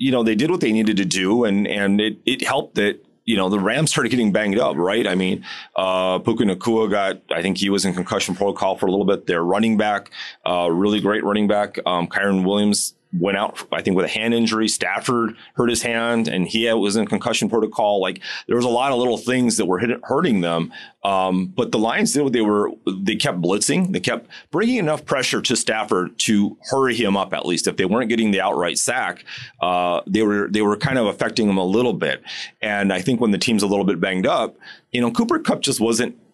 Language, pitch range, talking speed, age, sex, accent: English, 95-115 Hz, 235 wpm, 30-49, male, American